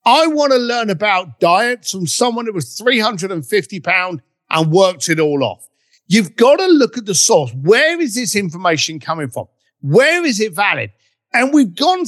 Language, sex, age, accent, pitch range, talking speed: English, male, 50-69, British, 165-250 Hz, 185 wpm